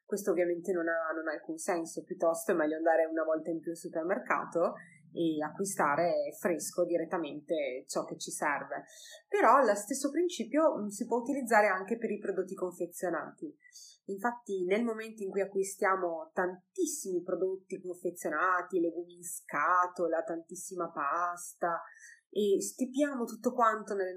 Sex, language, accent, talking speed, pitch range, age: female, Italian, native, 140 wpm, 175-230 Hz, 30-49